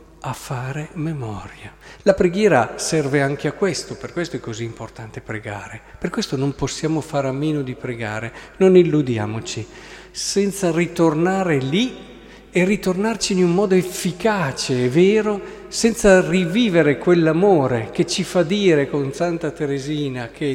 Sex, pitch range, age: male, 130-180 Hz, 50-69